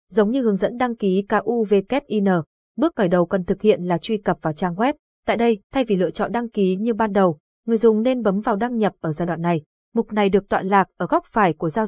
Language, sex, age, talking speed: Vietnamese, female, 20-39, 260 wpm